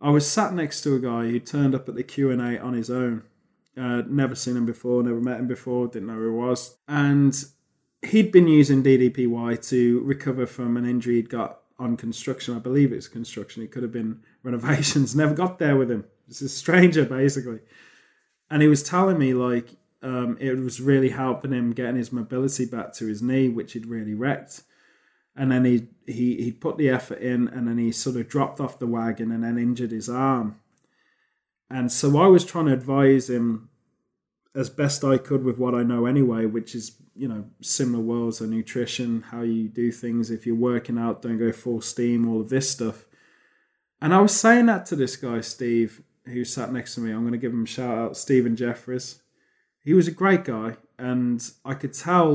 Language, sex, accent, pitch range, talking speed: English, male, British, 115-135 Hz, 210 wpm